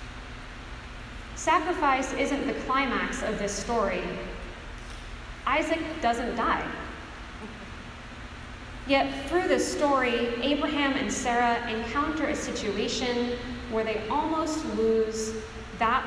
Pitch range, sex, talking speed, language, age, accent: 215-265 Hz, female, 95 wpm, English, 30-49, American